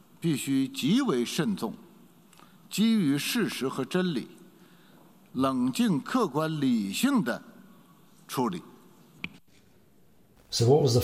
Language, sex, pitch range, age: English, male, 105-125 Hz, 50-69